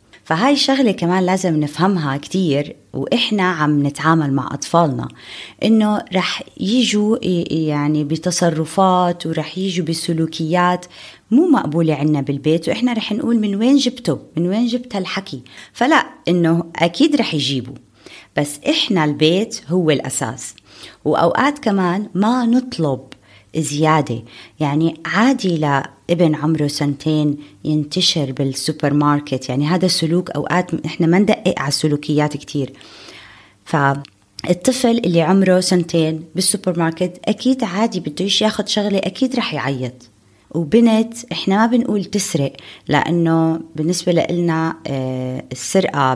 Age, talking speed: 20-39, 115 wpm